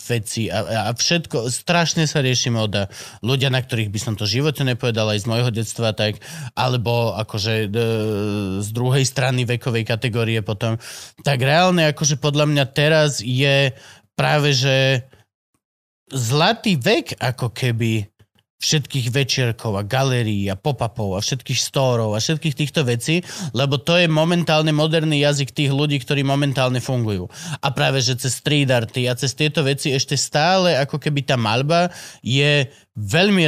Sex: male